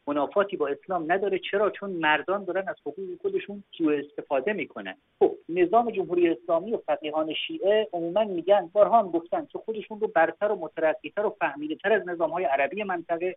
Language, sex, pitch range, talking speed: Persian, male, 150-215 Hz, 175 wpm